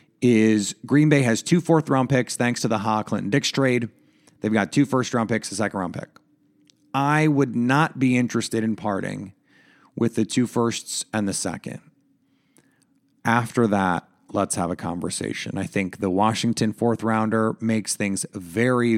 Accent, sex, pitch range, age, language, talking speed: American, male, 110-150 Hz, 30-49, English, 165 wpm